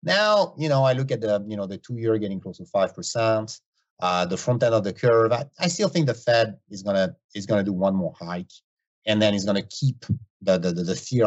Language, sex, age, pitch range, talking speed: English, male, 30-49, 100-150 Hz, 250 wpm